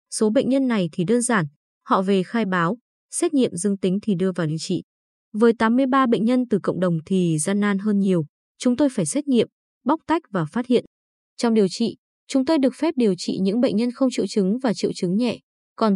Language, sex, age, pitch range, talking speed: Vietnamese, female, 20-39, 190-255 Hz, 235 wpm